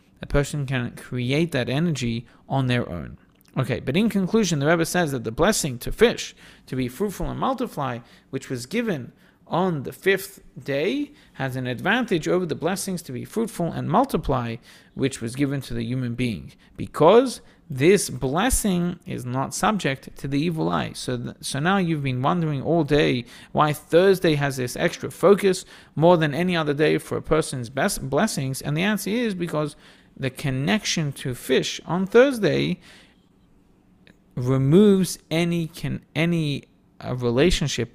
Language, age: English, 40-59